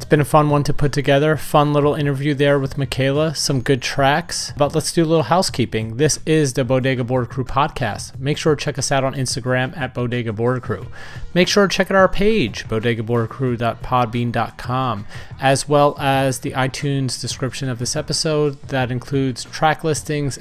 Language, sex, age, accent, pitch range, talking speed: English, male, 30-49, American, 125-150 Hz, 185 wpm